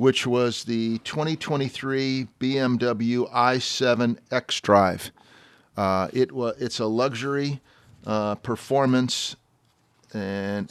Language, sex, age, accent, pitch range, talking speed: English, male, 40-59, American, 105-120 Hz, 80 wpm